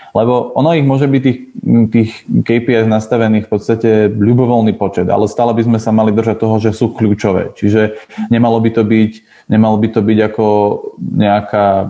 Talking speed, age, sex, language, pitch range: 170 wpm, 20-39, male, Slovak, 105-115 Hz